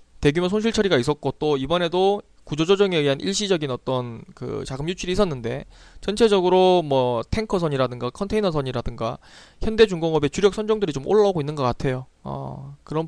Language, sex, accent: Korean, male, native